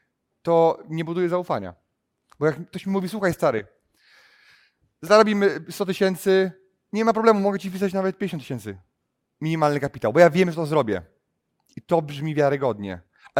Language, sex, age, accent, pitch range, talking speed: Polish, male, 30-49, native, 140-175 Hz, 160 wpm